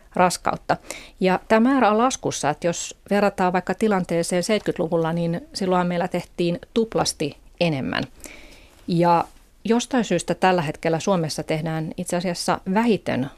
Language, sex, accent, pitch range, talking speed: Finnish, female, native, 160-185 Hz, 125 wpm